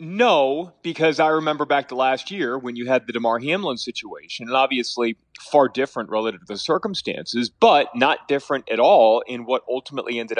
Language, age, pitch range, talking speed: English, 30-49, 115-140 Hz, 185 wpm